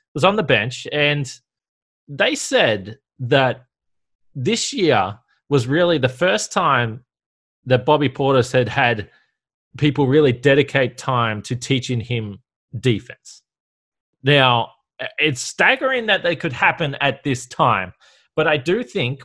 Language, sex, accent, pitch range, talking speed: English, male, Australian, 120-150 Hz, 130 wpm